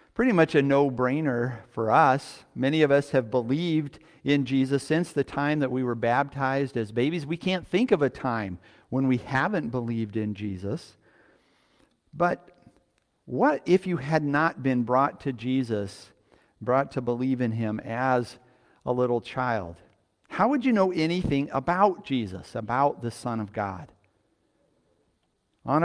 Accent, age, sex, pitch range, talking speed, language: American, 50-69, male, 120-155 Hz, 155 wpm, English